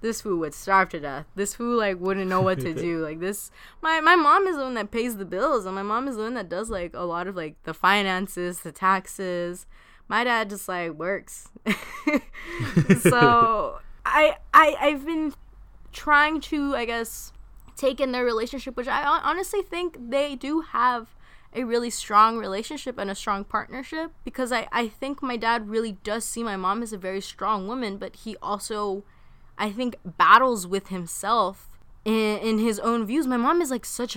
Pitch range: 185-240 Hz